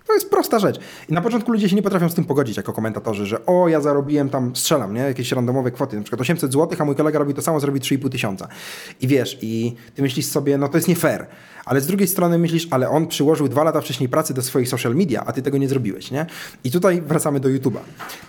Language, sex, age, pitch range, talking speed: Polish, male, 30-49, 120-160 Hz, 255 wpm